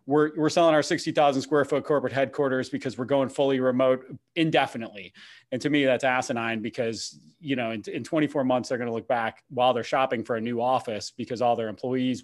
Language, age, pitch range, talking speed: English, 30-49, 120-160 Hz, 205 wpm